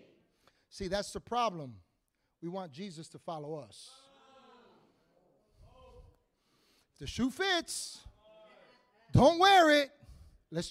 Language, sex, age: English, male, 40-59